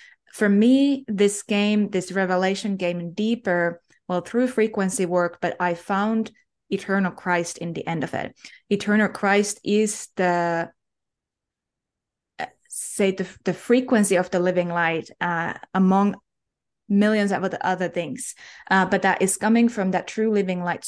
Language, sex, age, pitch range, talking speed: English, female, 20-39, 180-215 Hz, 145 wpm